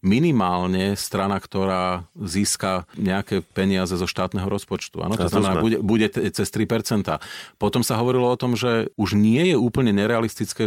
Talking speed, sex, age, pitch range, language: 145 wpm, male, 40-59, 95-115 Hz, Slovak